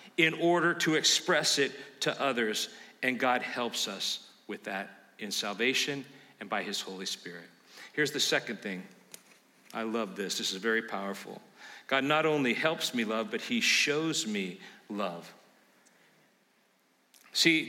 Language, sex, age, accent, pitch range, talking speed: English, male, 50-69, American, 145-195 Hz, 145 wpm